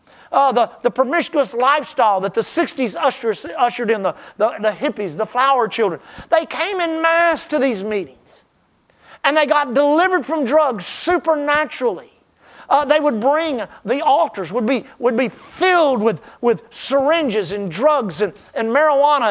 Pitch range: 220-300 Hz